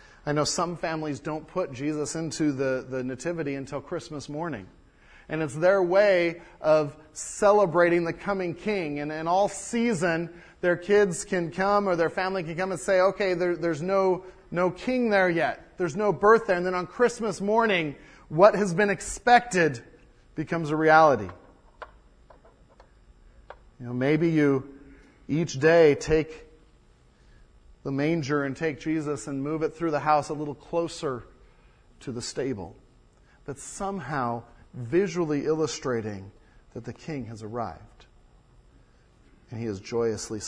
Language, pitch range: English, 140-195 Hz